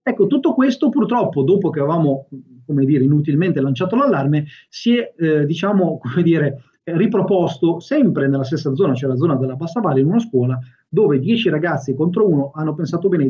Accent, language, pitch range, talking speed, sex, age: native, Italian, 135-180 Hz, 180 wpm, male, 30-49